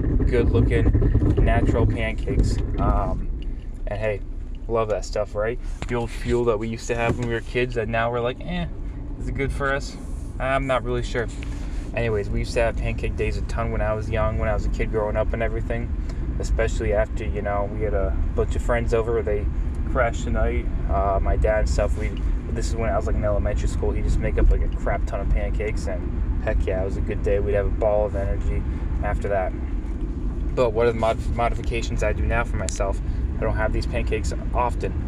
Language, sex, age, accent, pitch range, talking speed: English, male, 20-39, American, 80-110 Hz, 225 wpm